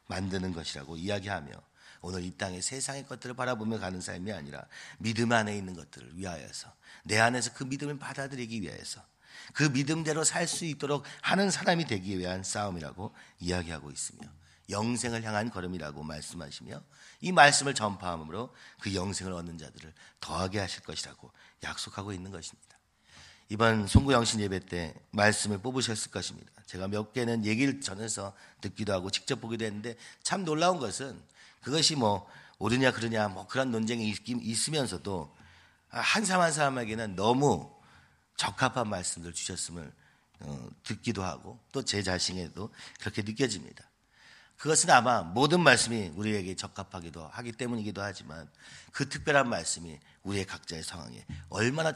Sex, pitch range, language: male, 90-120 Hz, Korean